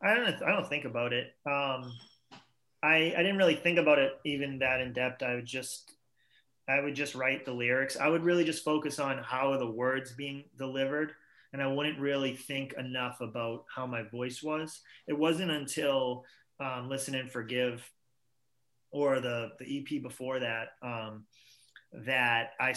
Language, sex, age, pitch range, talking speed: English, male, 30-49, 125-145 Hz, 180 wpm